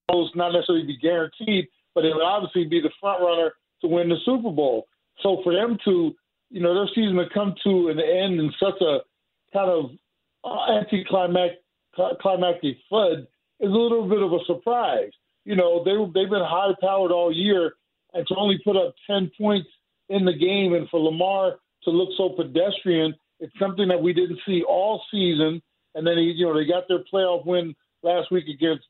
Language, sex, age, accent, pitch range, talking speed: English, male, 50-69, American, 165-195 Hz, 185 wpm